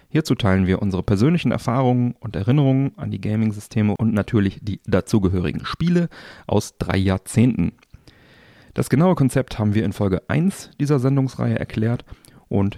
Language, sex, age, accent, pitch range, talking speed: German, male, 40-59, German, 100-130 Hz, 145 wpm